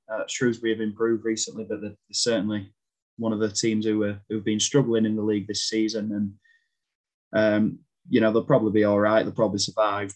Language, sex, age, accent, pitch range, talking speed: English, male, 20-39, British, 105-115 Hz, 195 wpm